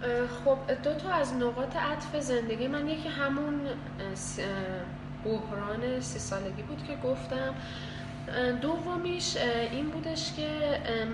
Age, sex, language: 10-29, female, Persian